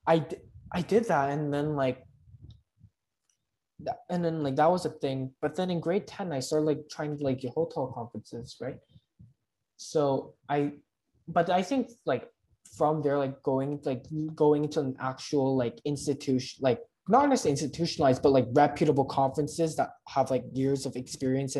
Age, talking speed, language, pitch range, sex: 20-39, 170 wpm, English, 130-155 Hz, male